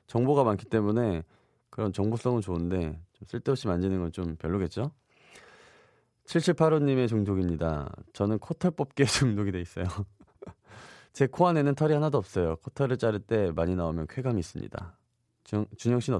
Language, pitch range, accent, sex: Korean, 100-150 Hz, native, male